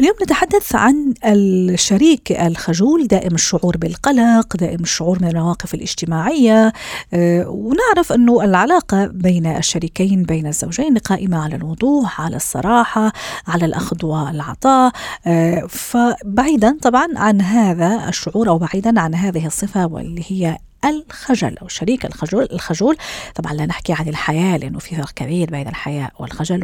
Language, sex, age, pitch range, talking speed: Arabic, female, 40-59, 170-240 Hz, 130 wpm